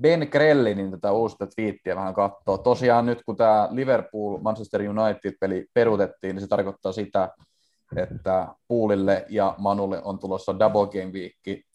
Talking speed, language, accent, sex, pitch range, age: 140 wpm, Finnish, native, male, 100-120 Hz, 30-49